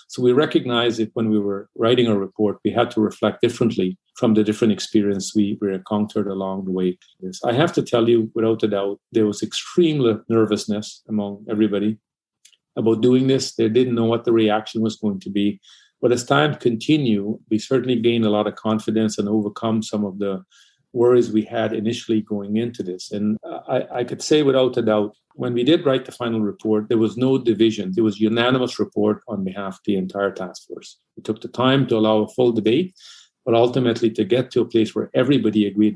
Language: English